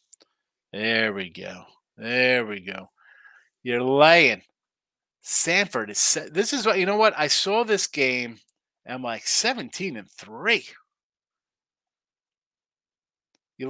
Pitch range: 110-150 Hz